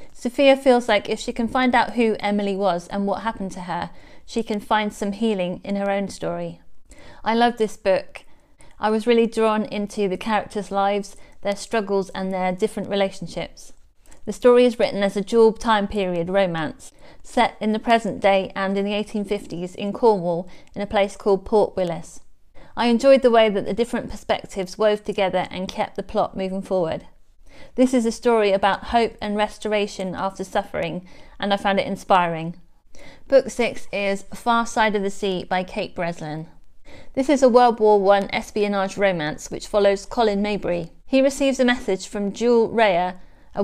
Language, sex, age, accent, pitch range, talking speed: English, female, 30-49, British, 195-230 Hz, 180 wpm